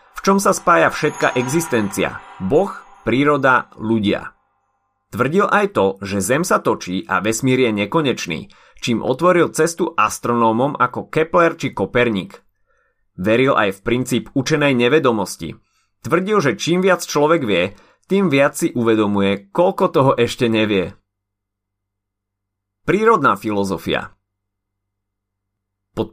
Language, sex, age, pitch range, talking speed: Slovak, male, 30-49, 100-170 Hz, 115 wpm